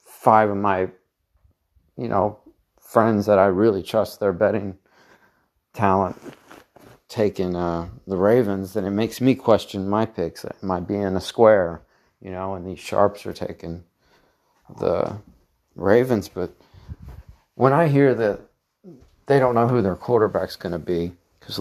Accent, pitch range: American, 90-115 Hz